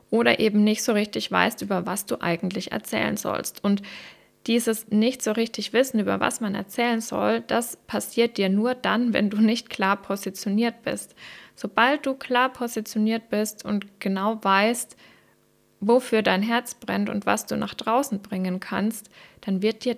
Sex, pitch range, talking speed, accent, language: female, 205-240 Hz, 170 wpm, German, German